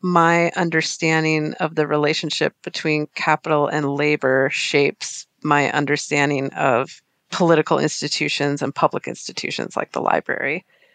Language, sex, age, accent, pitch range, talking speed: English, female, 30-49, American, 150-185 Hz, 115 wpm